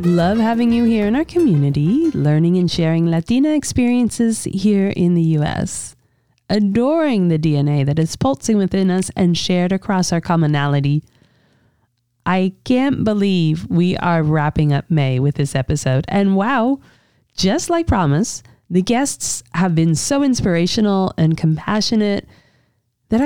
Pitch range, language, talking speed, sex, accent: 145-210 Hz, English, 140 wpm, female, American